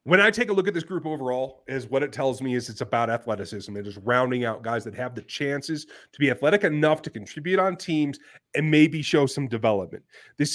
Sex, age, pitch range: male, 30-49, 125-165 Hz